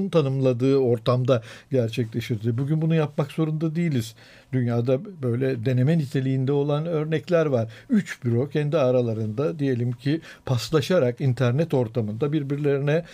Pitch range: 125-155 Hz